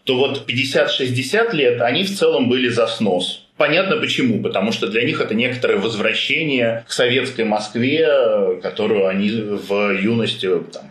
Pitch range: 105-130 Hz